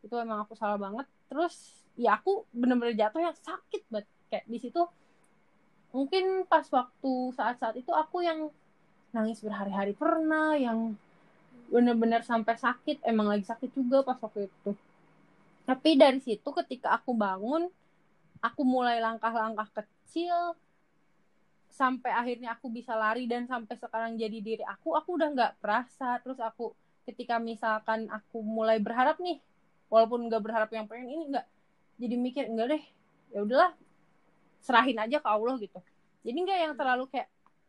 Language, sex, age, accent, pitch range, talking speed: Indonesian, female, 20-39, native, 220-275 Hz, 145 wpm